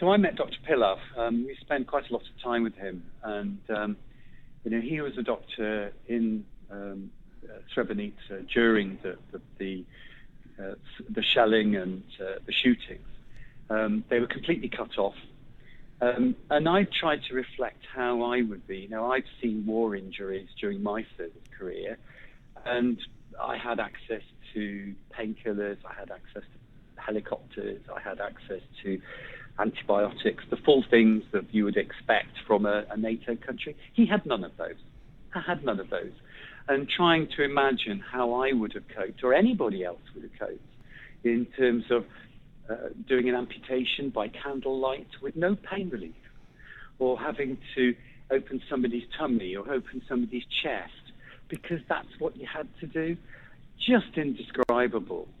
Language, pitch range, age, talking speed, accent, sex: English, 110-140 Hz, 50-69, 160 wpm, British, male